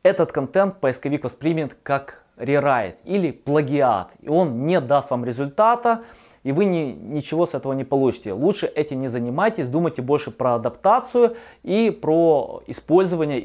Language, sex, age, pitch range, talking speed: Russian, male, 20-39, 125-170 Hz, 145 wpm